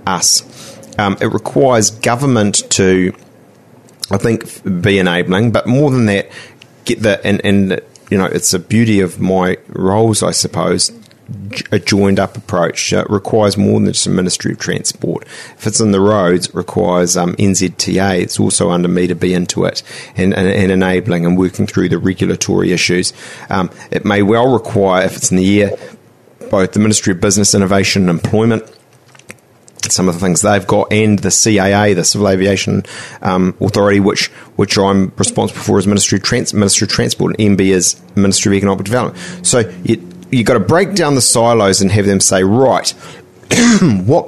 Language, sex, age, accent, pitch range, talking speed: English, male, 30-49, Australian, 95-110 Hz, 180 wpm